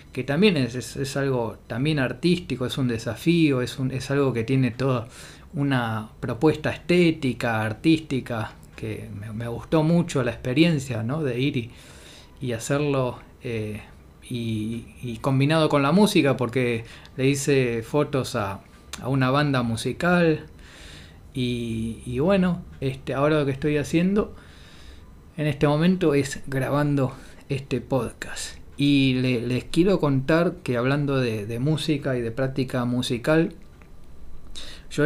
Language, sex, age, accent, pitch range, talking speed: Spanish, male, 20-39, Argentinian, 120-150 Hz, 140 wpm